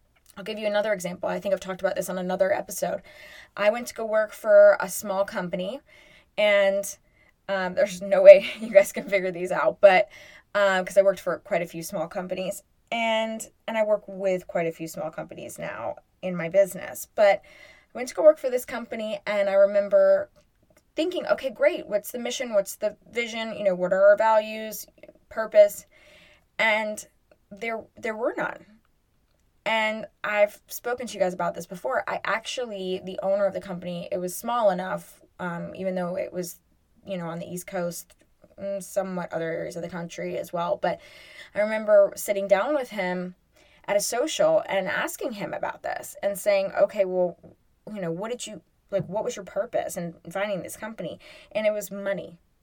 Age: 20-39